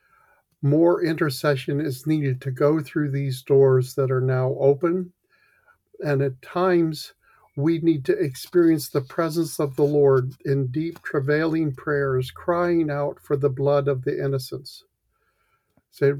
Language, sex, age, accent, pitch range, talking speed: English, male, 50-69, American, 135-155 Hz, 140 wpm